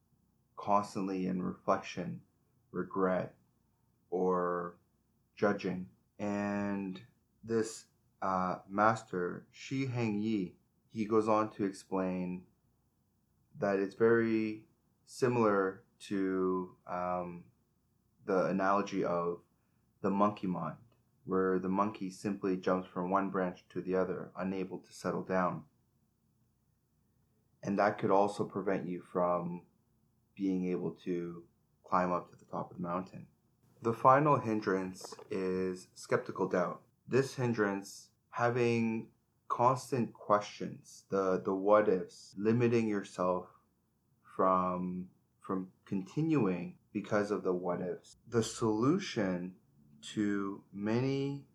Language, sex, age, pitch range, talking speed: English, male, 20-39, 95-110 Hz, 105 wpm